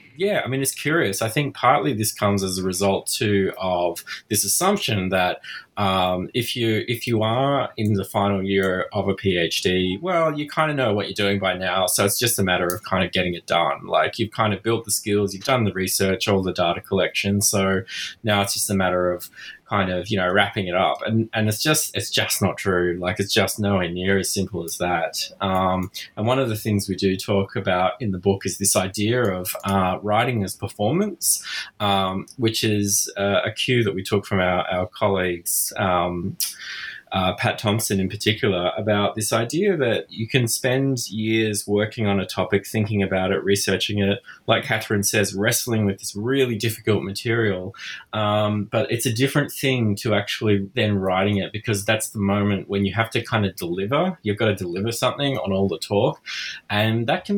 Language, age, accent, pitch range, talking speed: English, 20-39, Australian, 95-115 Hz, 205 wpm